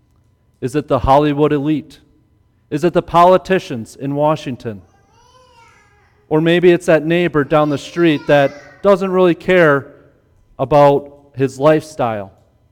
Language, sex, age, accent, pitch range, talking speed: English, male, 40-59, American, 120-170 Hz, 125 wpm